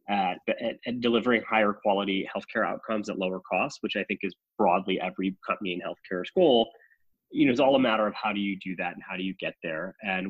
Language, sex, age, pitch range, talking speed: English, male, 20-39, 95-115 Hz, 235 wpm